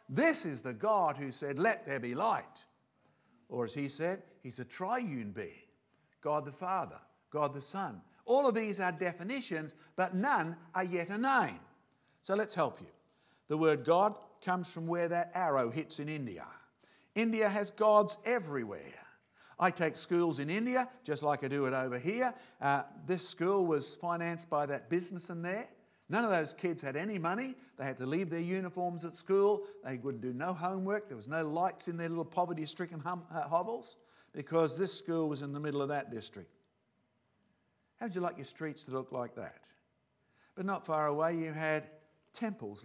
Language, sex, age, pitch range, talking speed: English, male, 50-69, 150-200 Hz, 185 wpm